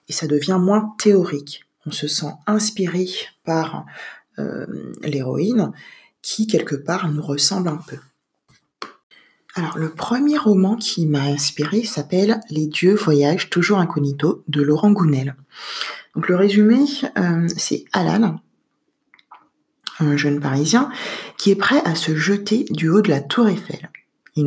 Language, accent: French, French